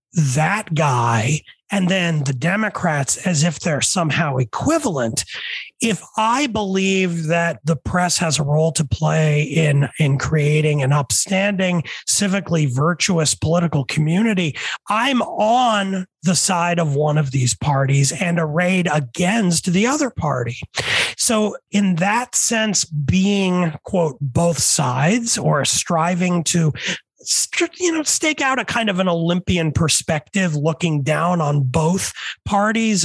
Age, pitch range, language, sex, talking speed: 30-49, 150-200 Hz, English, male, 130 wpm